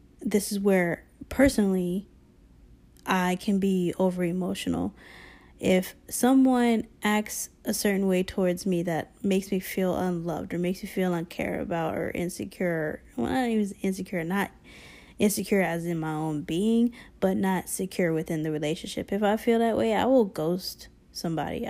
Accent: American